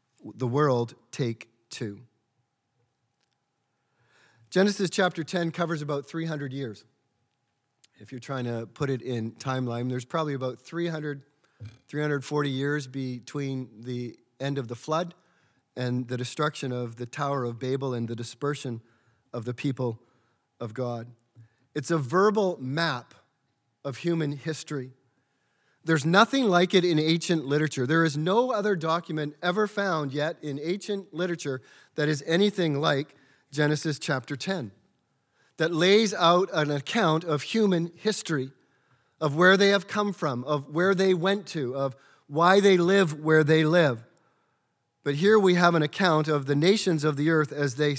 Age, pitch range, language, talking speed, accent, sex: 40-59, 125-170 Hz, English, 150 wpm, American, male